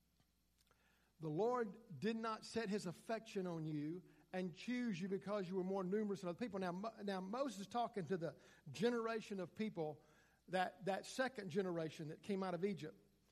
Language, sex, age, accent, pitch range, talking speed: English, male, 50-69, American, 160-225 Hz, 175 wpm